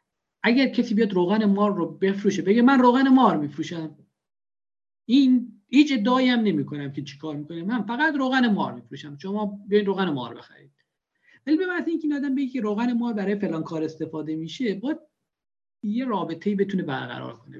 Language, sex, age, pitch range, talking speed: Persian, male, 50-69, 150-230 Hz, 175 wpm